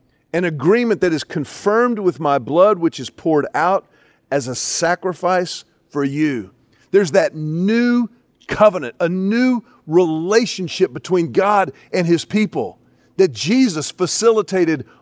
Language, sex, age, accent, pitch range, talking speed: English, male, 40-59, American, 160-215 Hz, 130 wpm